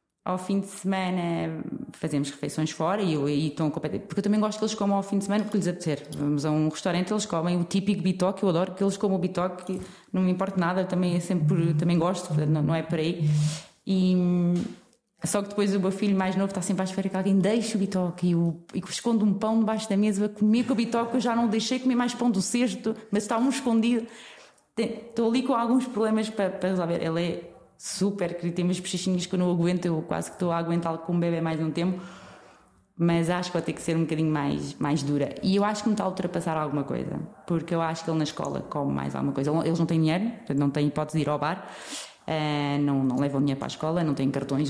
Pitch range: 160-205 Hz